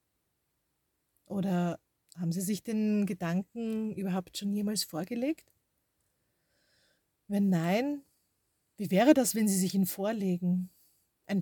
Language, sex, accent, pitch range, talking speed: German, female, Austrian, 175-220 Hz, 110 wpm